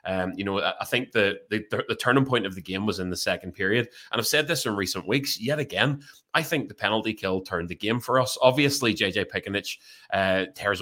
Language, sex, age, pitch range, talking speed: English, male, 20-39, 95-110 Hz, 235 wpm